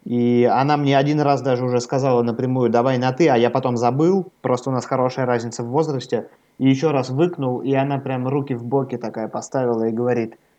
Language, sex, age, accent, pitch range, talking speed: Russian, male, 20-39, native, 115-140 Hz, 210 wpm